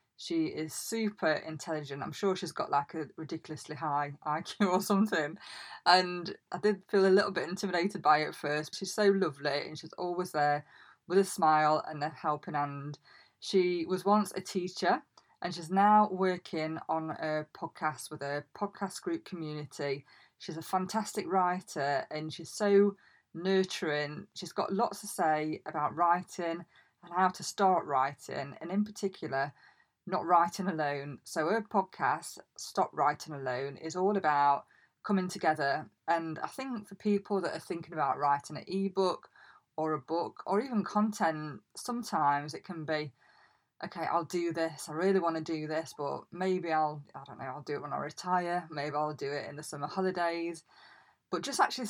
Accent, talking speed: British, 170 wpm